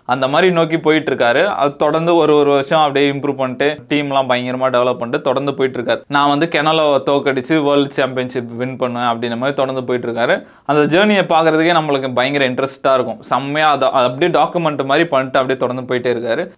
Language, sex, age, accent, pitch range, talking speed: Tamil, male, 20-39, native, 130-165 Hz, 185 wpm